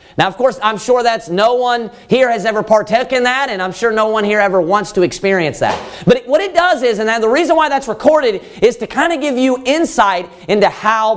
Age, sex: 40-59, male